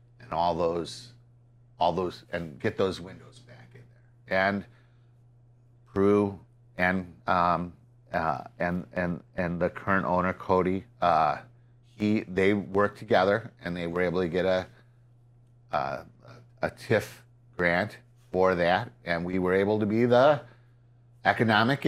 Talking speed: 135 wpm